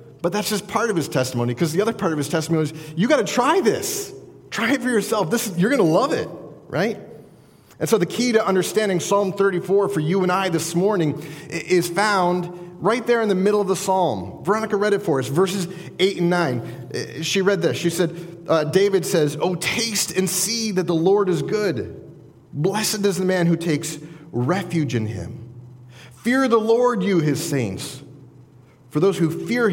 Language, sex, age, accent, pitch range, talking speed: English, male, 30-49, American, 155-210 Hz, 200 wpm